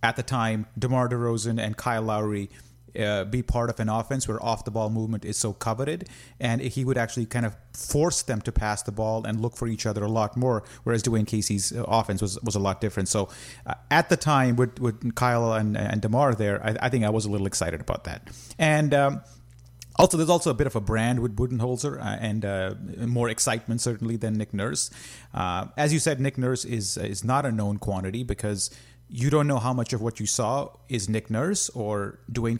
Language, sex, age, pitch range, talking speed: English, male, 30-49, 105-125 Hz, 220 wpm